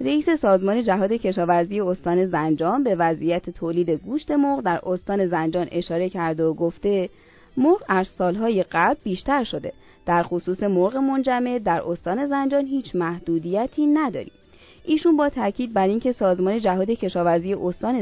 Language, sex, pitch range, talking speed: Persian, female, 170-250 Hz, 145 wpm